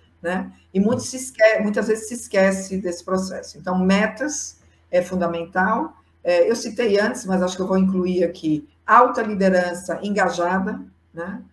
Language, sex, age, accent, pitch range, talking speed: Portuguese, female, 50-69, Brazilian, 165-195 Hz, 145 wpm